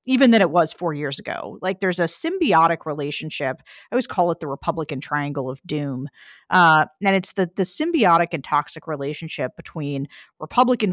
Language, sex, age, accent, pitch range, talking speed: English, female, 40-59, American, 155-220 Hz, 175 wpm